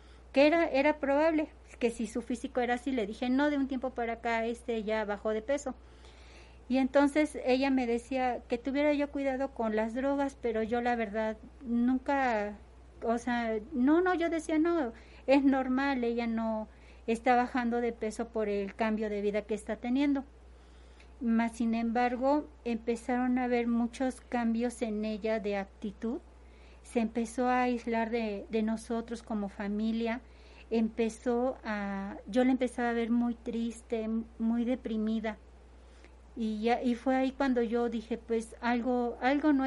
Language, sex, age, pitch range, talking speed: Spanish, female, 40-59, 220-255 Hz, 160 wpm